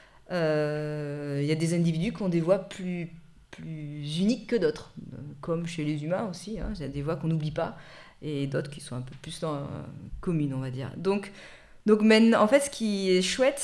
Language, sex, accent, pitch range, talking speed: French, female, French, 165-215 Hz, 225 wpm